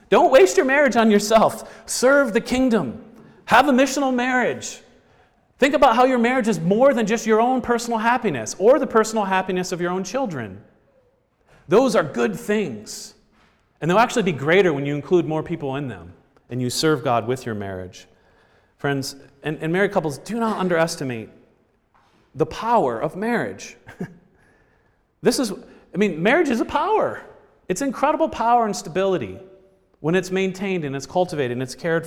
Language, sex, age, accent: English, male, 40-59, American